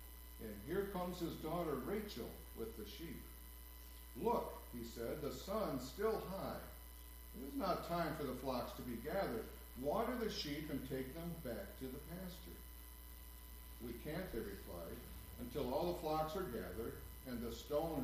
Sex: male